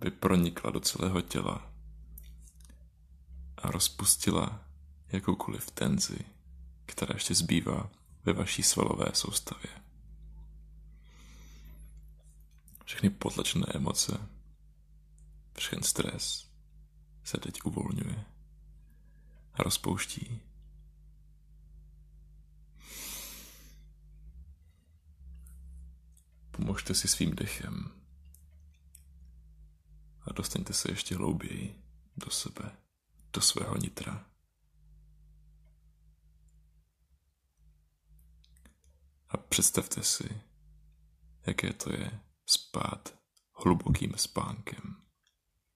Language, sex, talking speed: Czech, male, 65 wpm